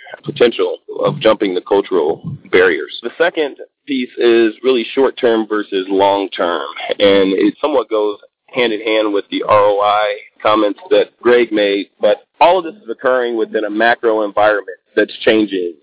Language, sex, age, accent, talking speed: English, male, 30-49, American, 145 wpm